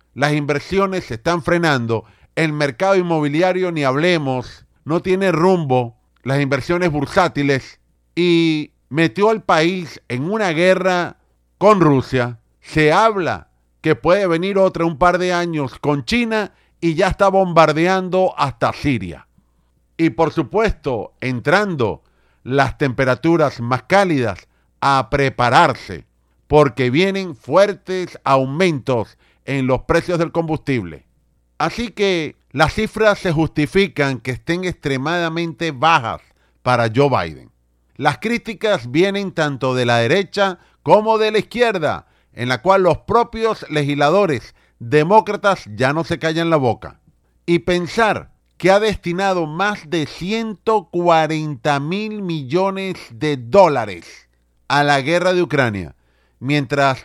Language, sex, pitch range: Spanish, male, 130-185 Hz